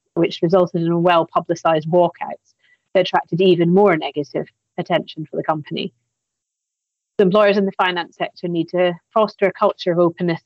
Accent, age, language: British, 30-49, English